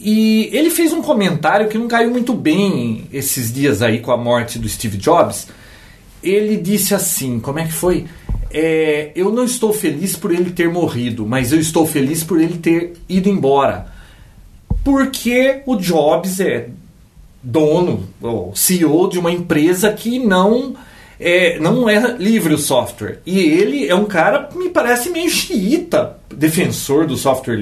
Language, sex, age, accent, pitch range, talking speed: Portuguese, male, 40-59, Brazilian, 140-215 Hz, 155 wpm